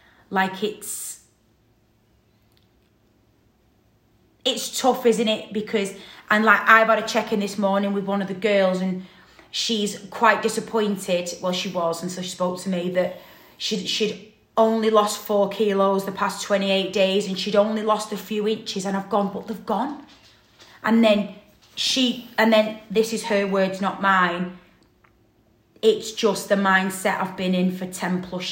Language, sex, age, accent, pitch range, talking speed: English, female, 30-49, British, 185-225 Hz, 165 wpm